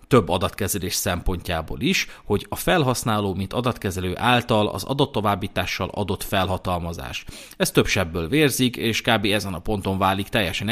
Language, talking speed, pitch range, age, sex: Hungarian, 145 wpm, 100-130 Hz, 30-49, male